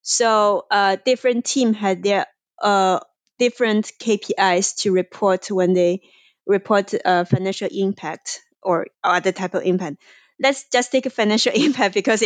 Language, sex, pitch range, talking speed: English, female, 190-240 Hz, 140 wpm